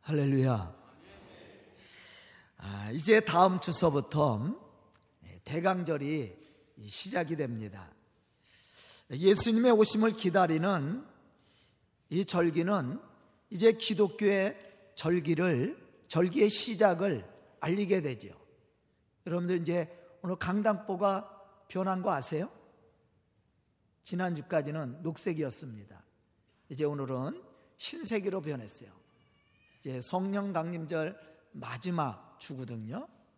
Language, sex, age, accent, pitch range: Korean, male, 50-69, native, 125-195 Hz